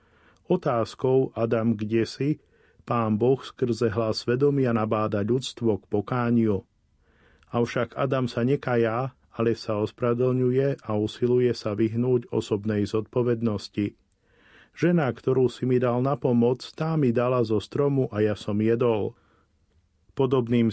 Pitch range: 105-125 Hz